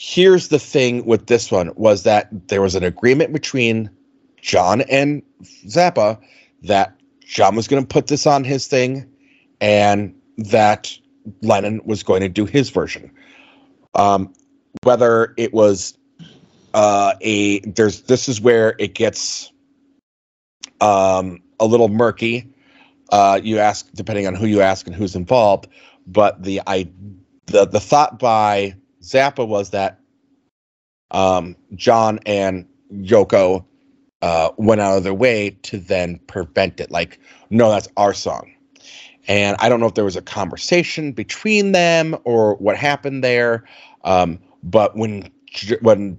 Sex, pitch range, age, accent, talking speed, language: male, 100-135 Hz, 30-49, American, 145 wpm, English